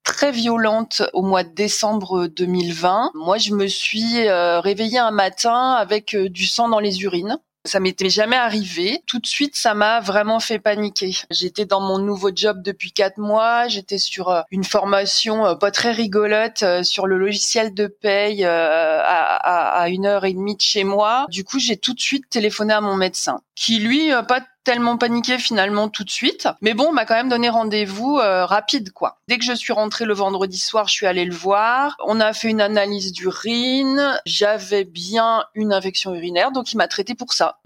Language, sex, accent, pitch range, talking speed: French, female, French, 200-245 Hz, 190 wpm